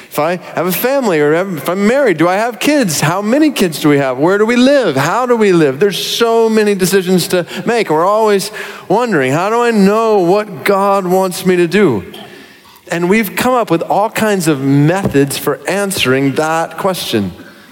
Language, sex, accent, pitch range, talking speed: English, male, American, 140-190 Hz, 200 wpm